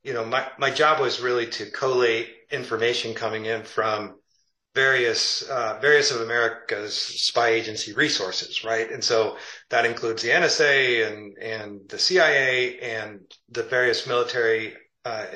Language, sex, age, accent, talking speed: English, male, 40-59, American, 145 wpm